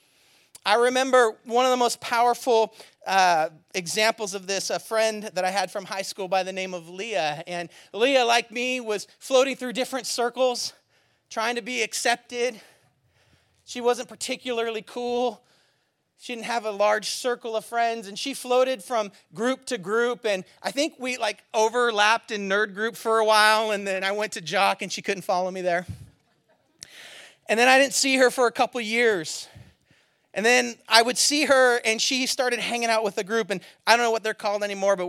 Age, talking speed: 40-59, 195 wpm